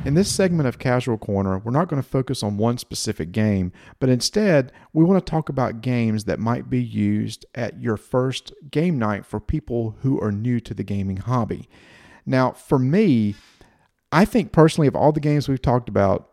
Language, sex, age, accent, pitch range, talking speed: English, male, 40-59, American, 110-140 Hz, 200 wpm